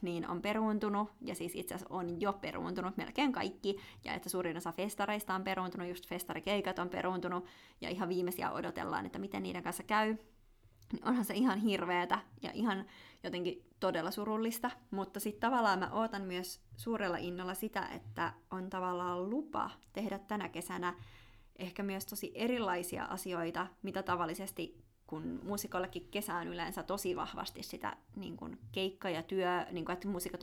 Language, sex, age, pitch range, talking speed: Finnish, female, 20-39, 175-205 Hz, 155 wpm